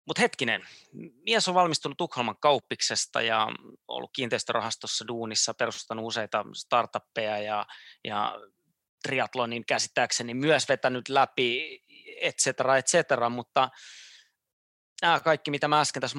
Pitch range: 110-140 Hz